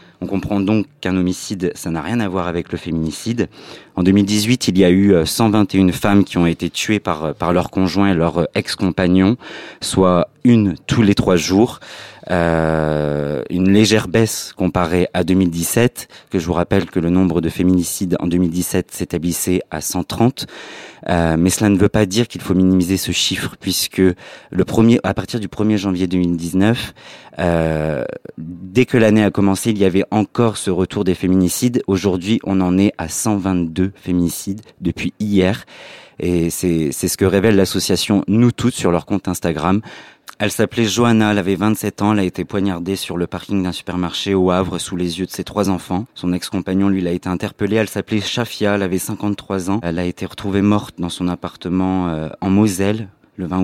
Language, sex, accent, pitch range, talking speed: French, male, French, 90-105 Hz, 185 wpm